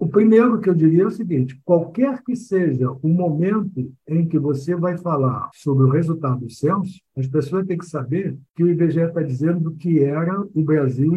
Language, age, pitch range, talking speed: Portuguese, 60-79, 140-185 Hz, 200 wpm